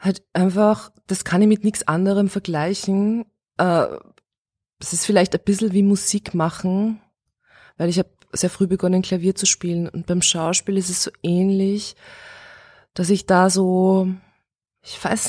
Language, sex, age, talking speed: German, female, 20-39, 155 wpm